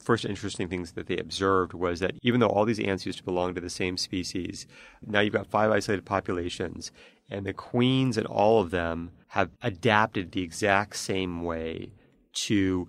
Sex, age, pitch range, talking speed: male, 30-49, 90-110 Hz, 185 wpm